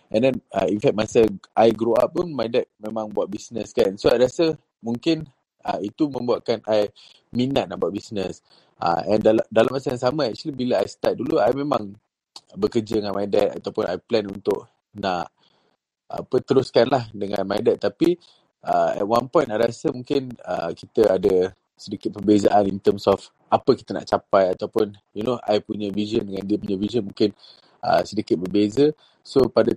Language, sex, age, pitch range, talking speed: Malay, male, 20-39, 100-125 Hz, 170 wpm